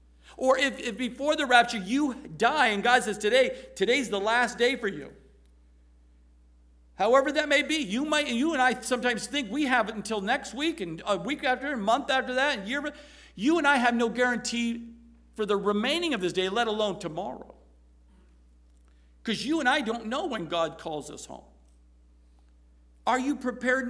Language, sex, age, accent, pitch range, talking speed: English, male, 50-69, American, 165-280 Hz, 190 wpm